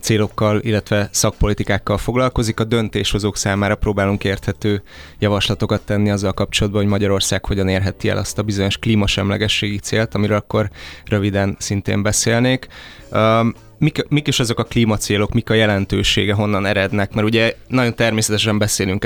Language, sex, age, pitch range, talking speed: Hungarian, male, 20-39, 100-115 Hz, 140 wpm